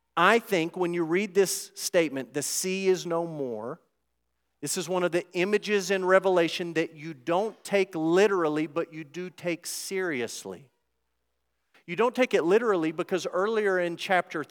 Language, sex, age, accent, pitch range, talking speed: English, male, 40-59, American, 115-175 Hz, 160 wpm